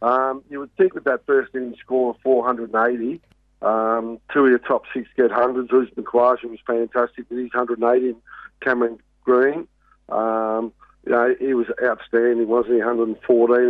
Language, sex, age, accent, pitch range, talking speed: English, male, 50-69, Australian, 120-130 Hz, 160 wpm